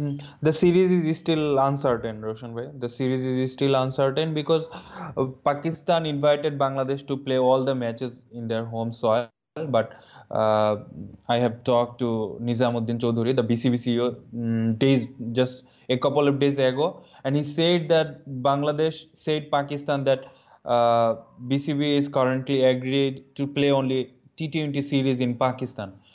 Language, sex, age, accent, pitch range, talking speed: English, male, 20-39, Indian, 120-140 Hz, 140 wpm